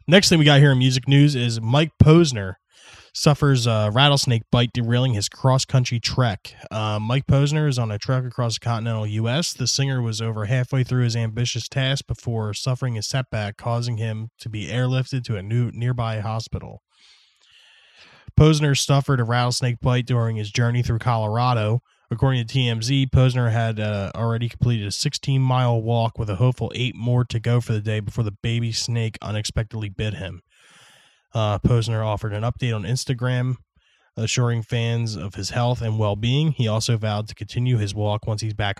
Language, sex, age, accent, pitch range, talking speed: English, male, 20-39, American, 110-135 Hz, 180 wpm